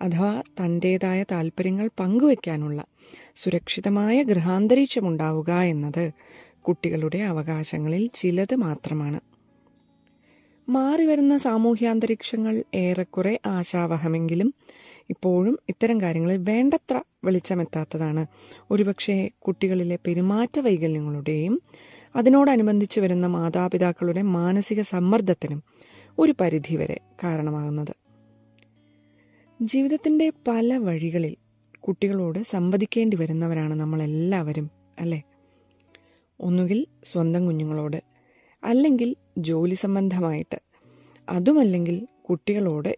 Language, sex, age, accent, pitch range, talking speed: Malayalam, female, 20-39, native, 160-220 Hz, 70 wpm